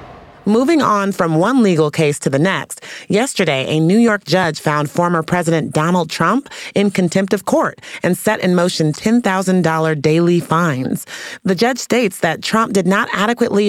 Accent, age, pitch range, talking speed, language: American, 30-49, 155-200 Hz, 165 wpm, English